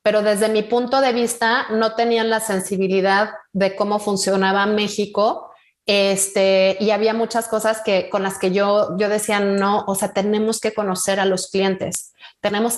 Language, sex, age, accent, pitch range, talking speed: Spanish, female, 30-49, Mexican, 195-230 Hz, 170 wpm